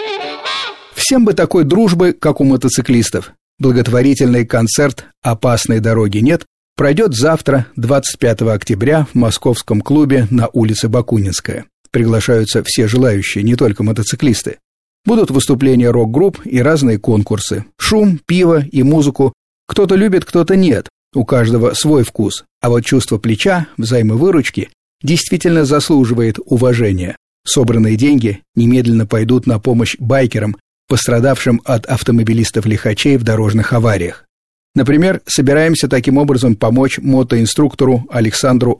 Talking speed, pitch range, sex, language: 115 wpm, 110-140 Hz, male, Russian